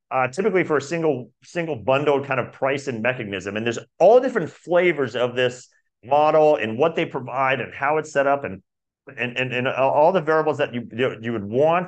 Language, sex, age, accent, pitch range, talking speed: English, male, 40-59, American, 120-155 Hz, 205 wpm